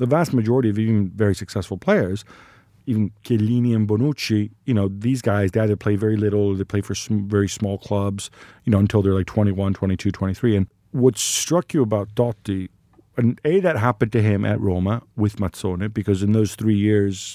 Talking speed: 200 wpm